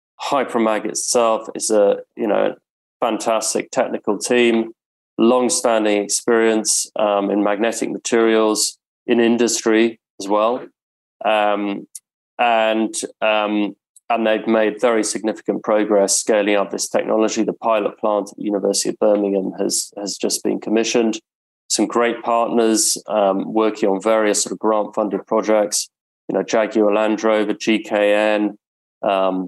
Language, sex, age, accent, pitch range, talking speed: English, male, 20-39, British, 100-115 Hz, 130 wpm